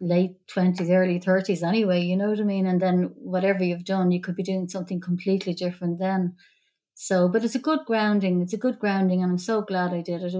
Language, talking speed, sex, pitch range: English, 235 wpm, female, 175-190 Hz